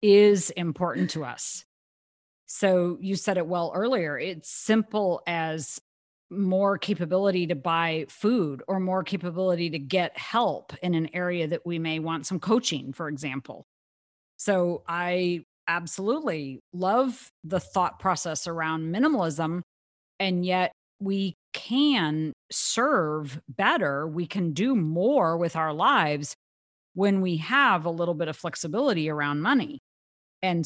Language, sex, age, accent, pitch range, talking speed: English, female, 40-59, American, 165-200 Hz, 135 wpm